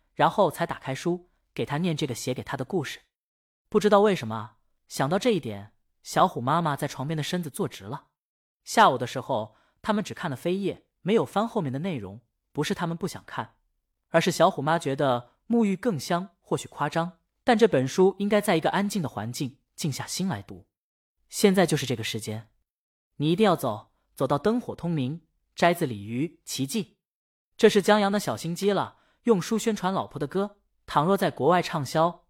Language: Chinese